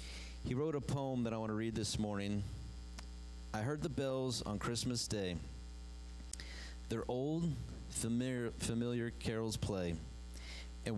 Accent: American